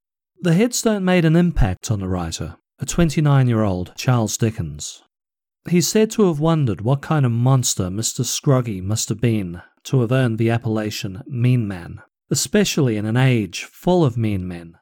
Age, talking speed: 40-59, 165 wpm